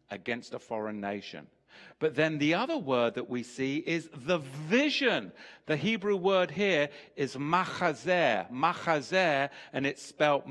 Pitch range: 135-180 Hz